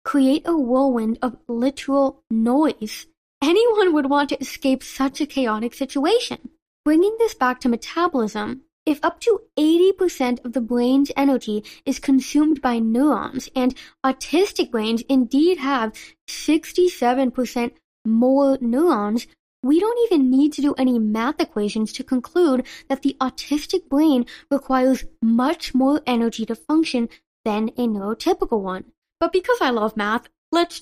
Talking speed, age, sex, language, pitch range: 140 wpm, 10-29, female, English, 230-295 Hz